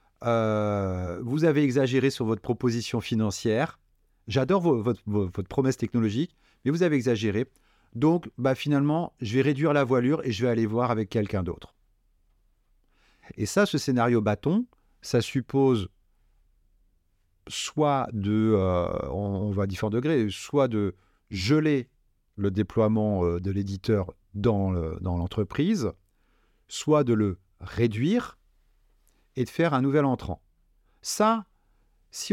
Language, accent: French, French